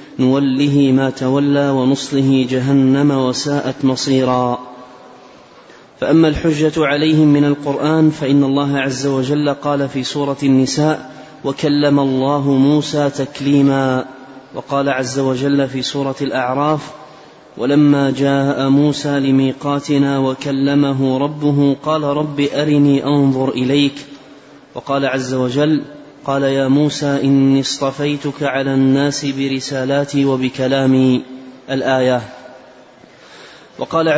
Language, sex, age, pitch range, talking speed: Arabic, male, 30-49, 135-145 Hz, 95 wpm